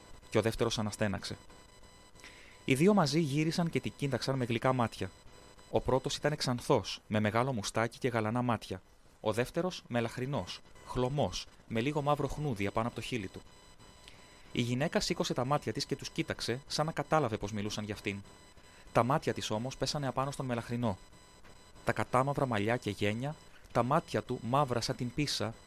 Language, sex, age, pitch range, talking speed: Greek, male, 30-49, 100-130 Hz, 170 wpm